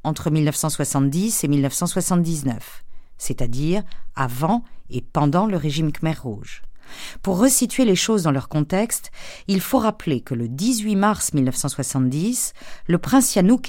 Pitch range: 140-215 Hz